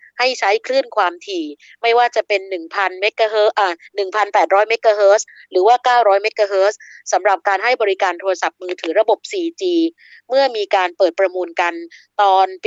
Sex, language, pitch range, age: female, Thai, 195-275 Hz, 20-39